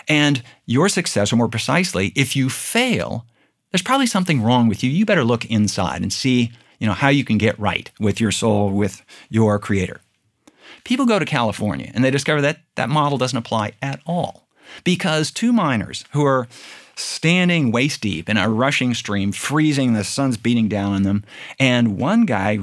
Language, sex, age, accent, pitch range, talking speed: English, male, 50-69, American, 105-150 Hz, 185 wpm